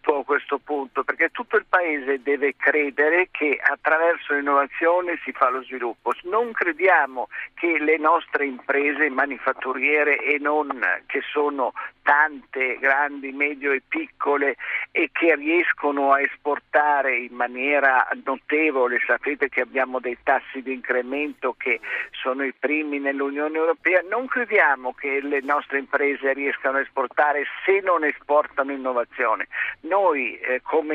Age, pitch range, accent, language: 50-69, 135-165 Hz, native, Italian